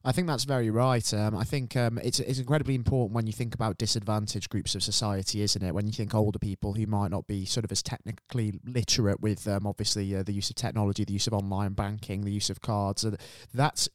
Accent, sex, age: British, male, 20-39